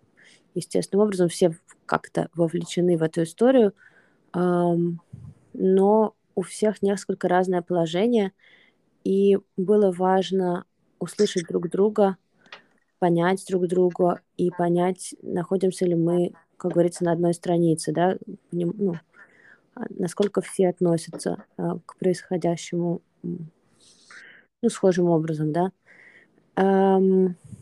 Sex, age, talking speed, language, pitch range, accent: female, 20-39, 105 wpm, Russian, 175-195 Hz, native